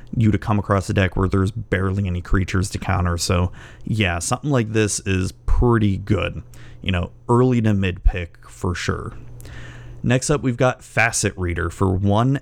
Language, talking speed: English, 180 wpm